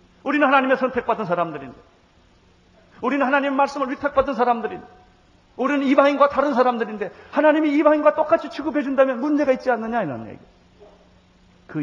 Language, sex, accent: Korean, male, native